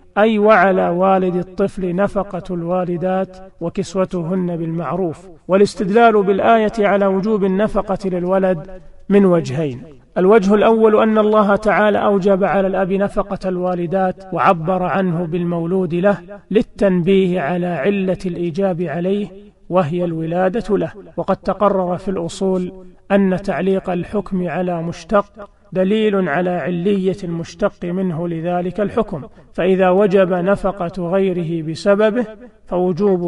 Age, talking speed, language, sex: 40-59, 110 wpm, Arabic, male